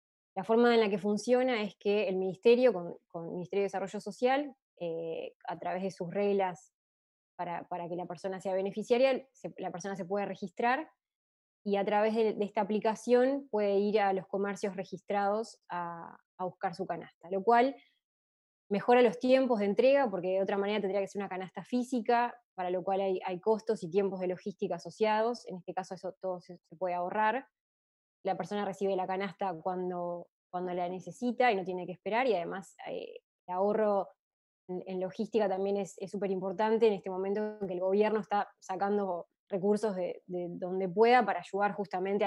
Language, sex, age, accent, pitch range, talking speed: Spanish, female, 20-39, Argentinian, 185-215 Hz, 190 wpm